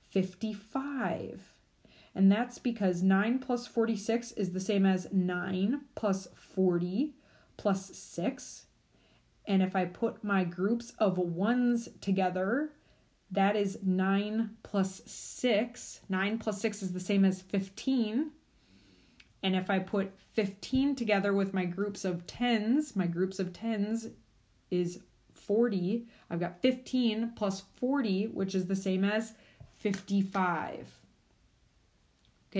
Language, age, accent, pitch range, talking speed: English, 20-39, American, 180-215 Hz, 120 wpm